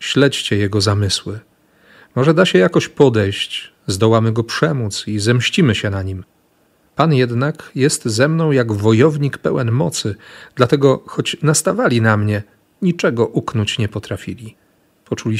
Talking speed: 135 wpm